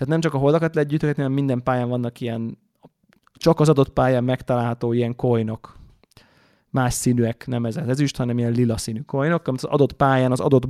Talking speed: 210 wpm